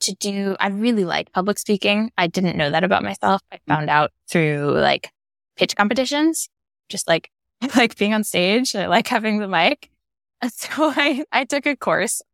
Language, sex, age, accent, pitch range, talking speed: English, female, 10-29, American, 165-230 Hz, 180 wpm